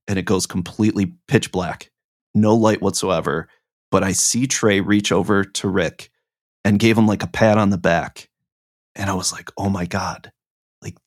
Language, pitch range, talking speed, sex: English, 100-115 Hz, 185 wpm, male